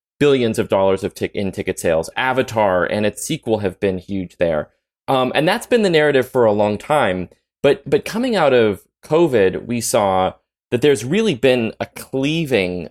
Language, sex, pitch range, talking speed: English, male, 100-135 Hz, 185 wpm